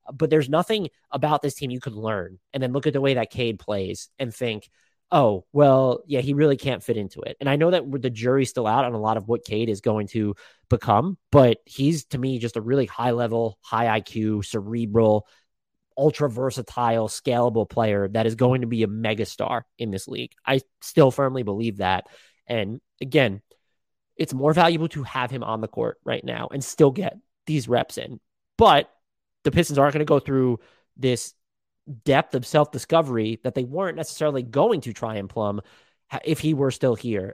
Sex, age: male, 20-39